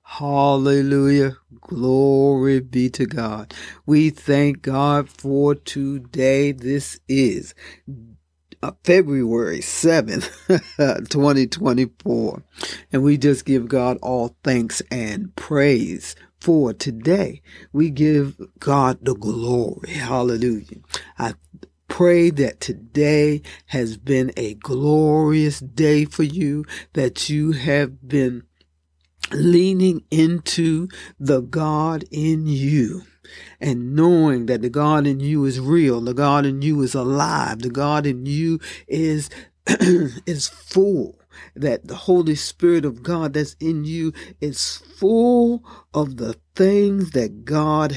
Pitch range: 130-155 Hz